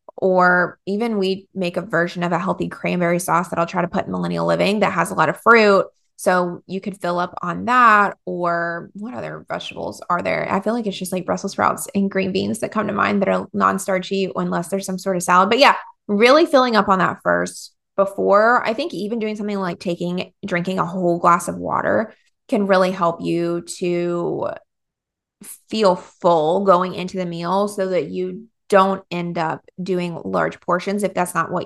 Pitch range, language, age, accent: 175-200 Hz, English, 20-39, American